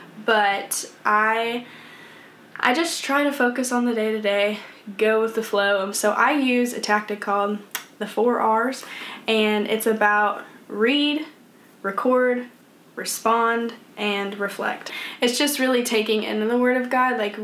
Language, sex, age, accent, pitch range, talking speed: English, female, 10-29, American, 205-235 Hz, 145 wpm